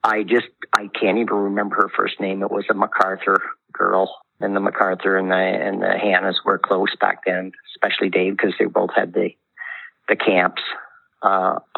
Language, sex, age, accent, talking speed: English, male, 50-69, American, 185 wpm